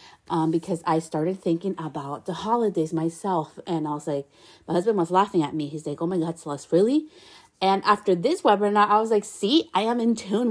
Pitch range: 160-215 Hz